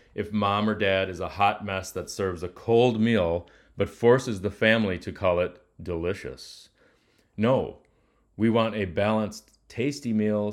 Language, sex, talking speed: English, male, 160 wpm